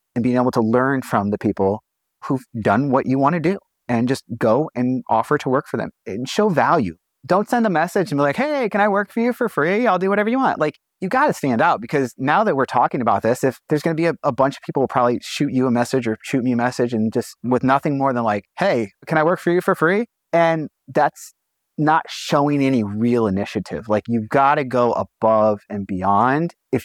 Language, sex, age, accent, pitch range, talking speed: English, male, 30-49, American, 115-150 Hz, 255 wpm